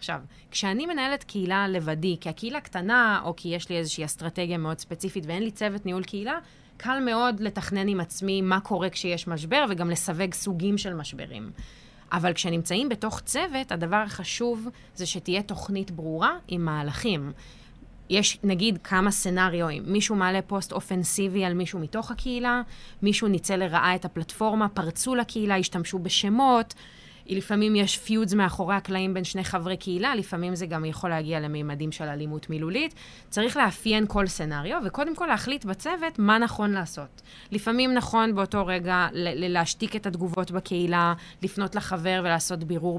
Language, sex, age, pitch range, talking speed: Hebrew, female, 20-39, 175-210 Hz, 150 wpm